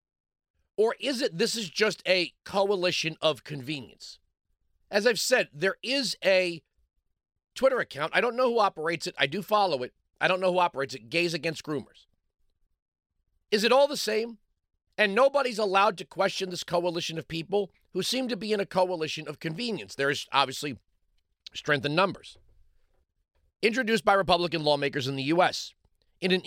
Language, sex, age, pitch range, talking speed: English, male, 40-59, 150-210 Hz, 170 wpm